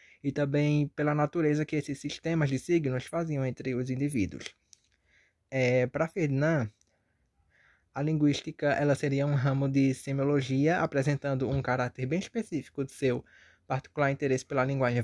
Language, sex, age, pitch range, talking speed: Portuguese, male, 20-39, 125-150 Hz, 140 wpm